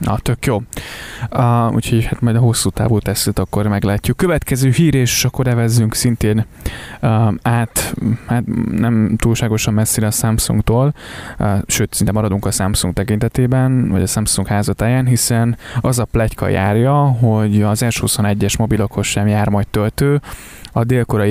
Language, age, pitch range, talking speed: Hungarian, 20-39, 105-120 Hz, 150 wpm